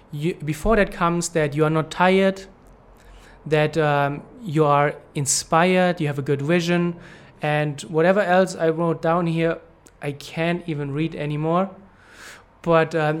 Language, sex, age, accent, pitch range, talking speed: English, male, 20-39, German, 145-170 Hz, 150 wpm